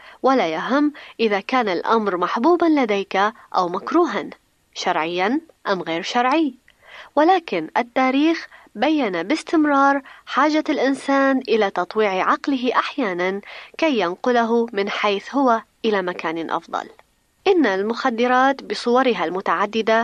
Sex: female